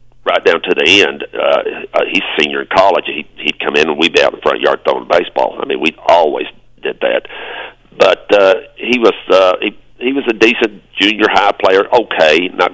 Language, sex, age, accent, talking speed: English, male, 50-69, American, 220 wpm